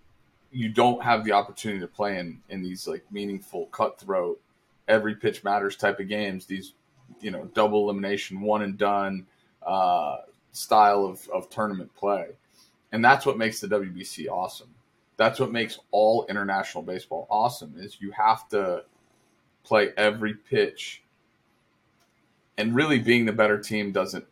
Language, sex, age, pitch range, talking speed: English, male, 30-49, 95-115 Hz, 150 wpm